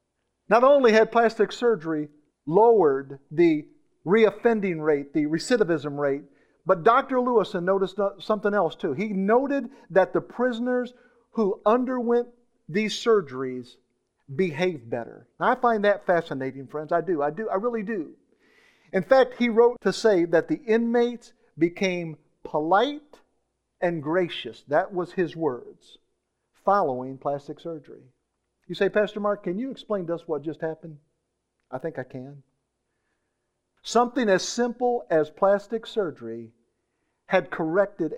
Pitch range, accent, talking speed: 155-225 Hz, American, 135 wpm